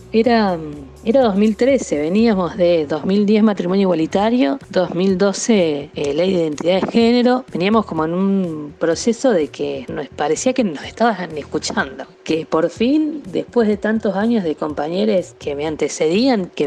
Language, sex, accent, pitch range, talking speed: Spanish, female, Argentinian, 165-225 Hz, 150 wpm